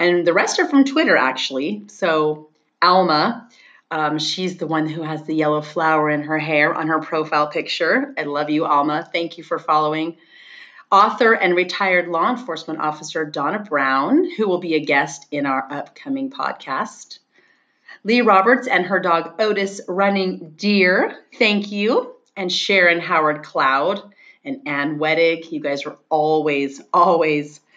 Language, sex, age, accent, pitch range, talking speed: English, female, 30-49, American, 160-205 Hz, 155 wpm